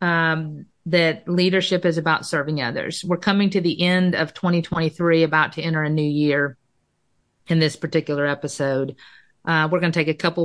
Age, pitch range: 40-59, 150-175 Hz